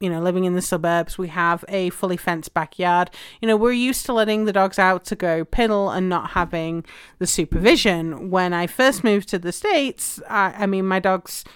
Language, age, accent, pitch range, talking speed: English, 30-49, British, 165-200 Hz, 215 wpm